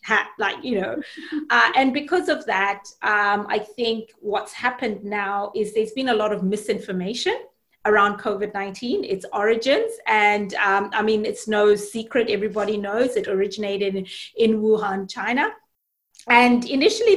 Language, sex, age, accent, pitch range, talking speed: English, female, 30-49, South African, 205-255 Hz, 145 wpm